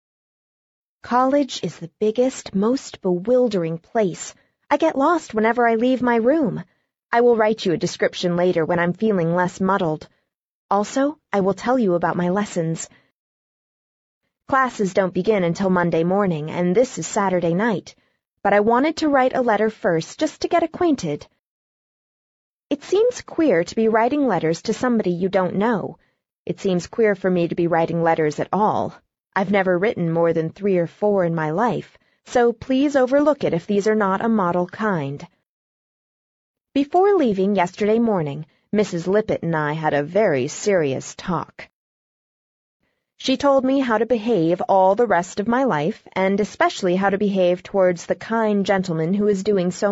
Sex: female